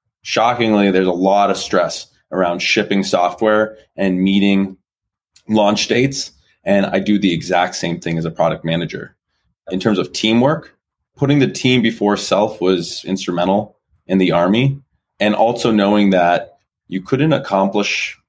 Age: 20-39